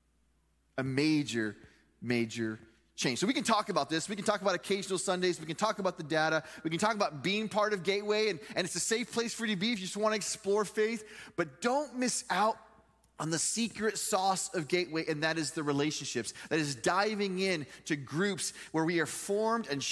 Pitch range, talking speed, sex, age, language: 140-215 Hz, 220 wpm, male, 20-39, English